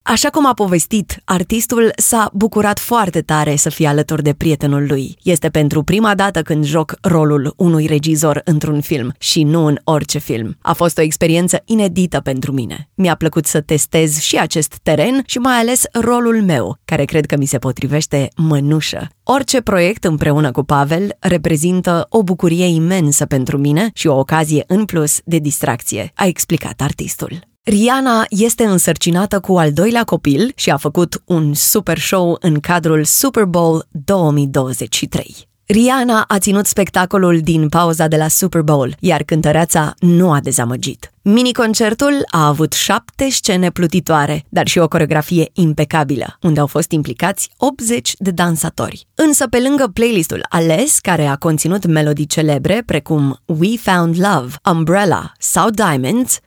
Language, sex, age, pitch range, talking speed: Romanian, female, 20-39, 155-215 Hz, 155 wpm